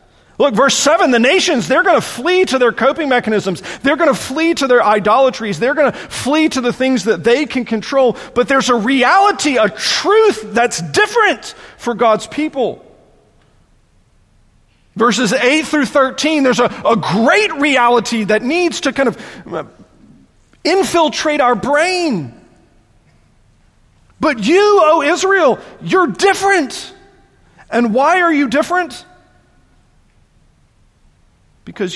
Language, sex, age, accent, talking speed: English, male, 40-59, American, 135 wpm